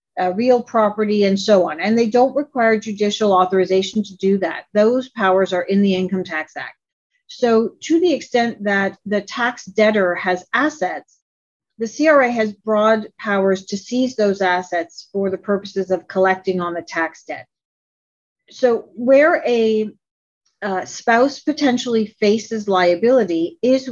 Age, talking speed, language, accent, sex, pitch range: 40-59, 150 wpm, English, American, female, 190-240 Hz